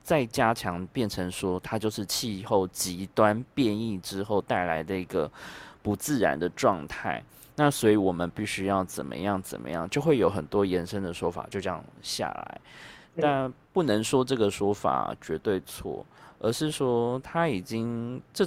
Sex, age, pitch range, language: male, 20-39, 95-120 Hz, Chinese